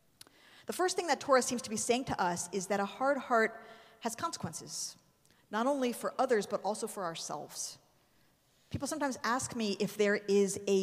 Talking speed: 190 wpm